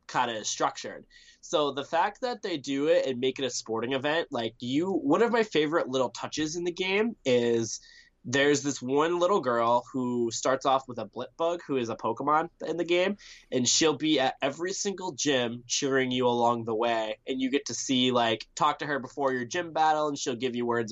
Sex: male